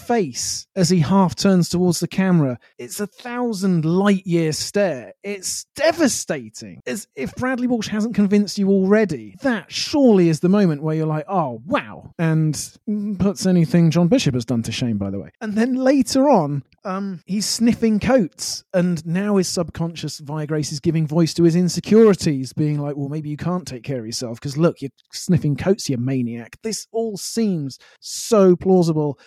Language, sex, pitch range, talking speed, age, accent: English, male, 150-205 Hz, 180 wpm, 30-49, British